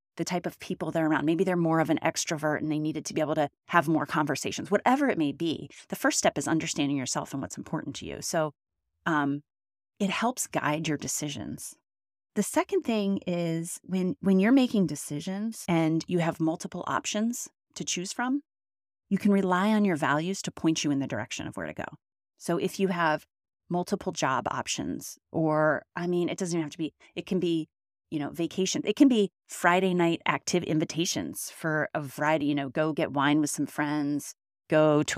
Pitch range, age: 150-185 Hz, 30-49